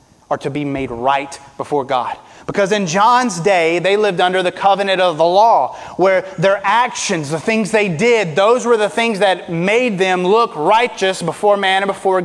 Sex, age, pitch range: male, 30-49, 205-245 Hz